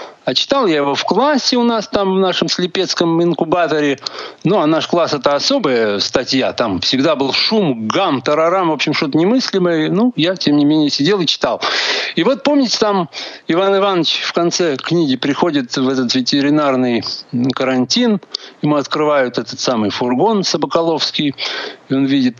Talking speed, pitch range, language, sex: 165 wpm, 145-215 Hz, Russian, male